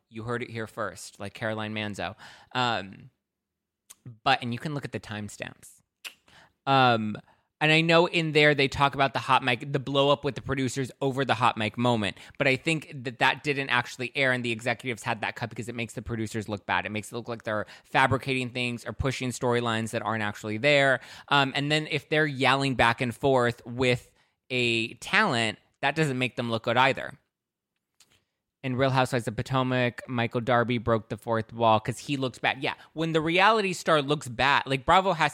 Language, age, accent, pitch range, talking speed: English, 20-39, American, 115-140 Hz, 200 wpm